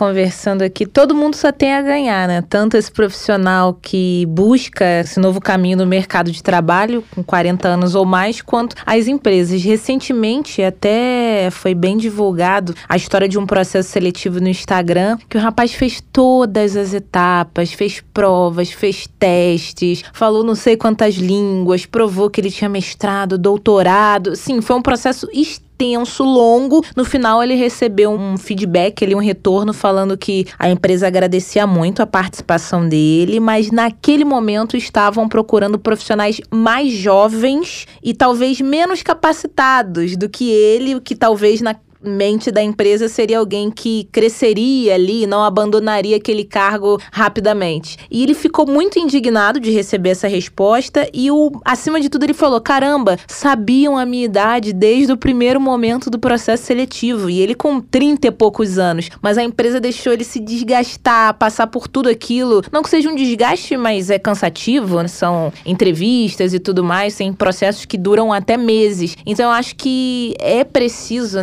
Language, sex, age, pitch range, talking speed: Portuguese, female, 20-39, 190-245 Hz, 160 wpm